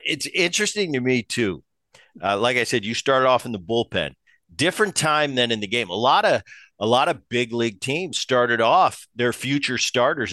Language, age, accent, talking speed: English, 50-69, American, 205 wpm